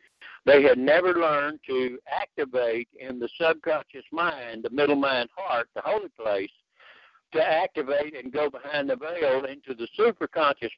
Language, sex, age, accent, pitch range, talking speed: English, male, 60-79, American, 130-175 Hz, 150 wpm